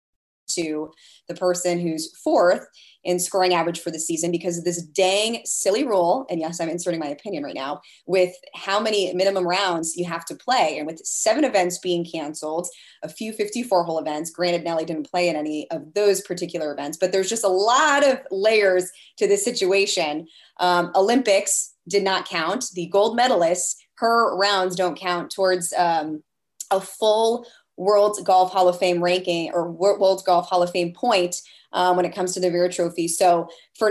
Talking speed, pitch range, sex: 185 wpm, 170-200 Hz, female